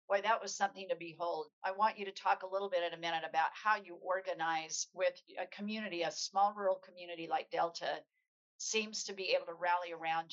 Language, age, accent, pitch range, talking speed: English, 50-69, American, 170-200 Hz, 215 wpm